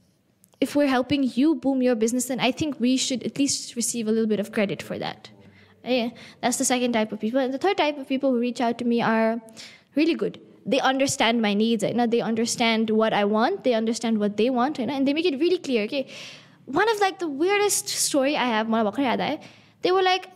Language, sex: English, female